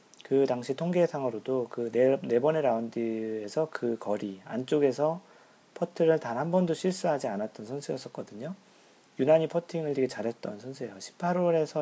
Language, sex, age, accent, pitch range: Korean, male, 40-59, native, 115-155 Hz